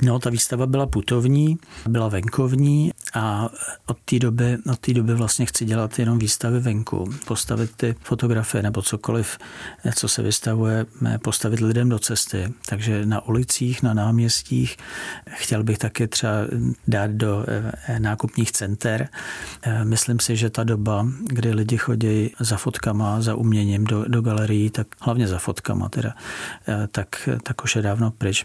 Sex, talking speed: male, 145 wpm